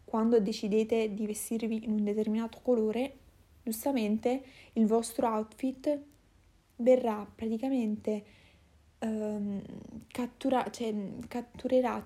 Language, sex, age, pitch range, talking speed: Italian, female, 20-39, 215-240 Hz, 90 wpm